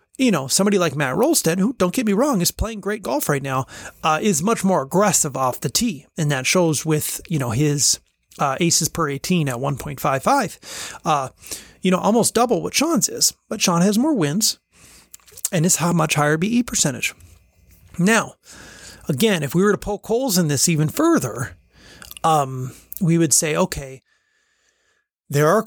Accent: American